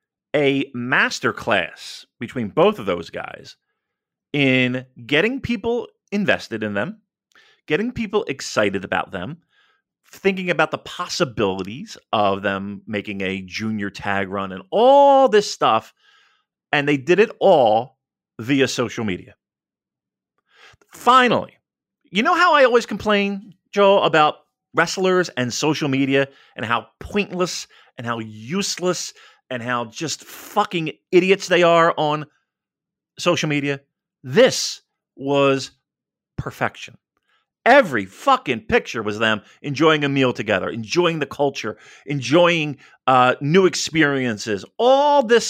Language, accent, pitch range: English, American, 135-205 Hz